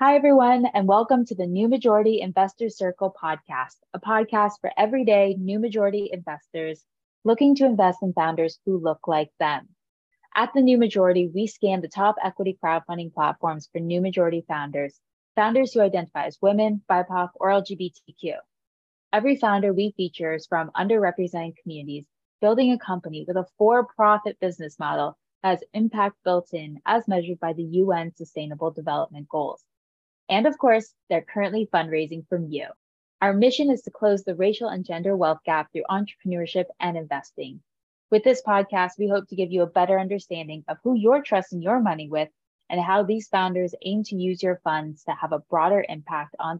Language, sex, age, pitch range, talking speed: English, female, 20-39, 165-210 Hz, 175 wpm